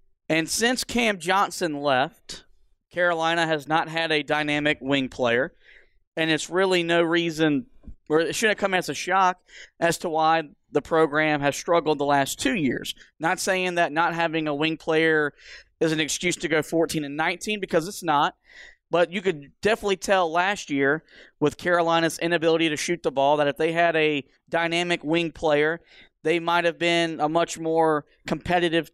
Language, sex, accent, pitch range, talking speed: English, male, American, 155-175 Hz, 180 wpm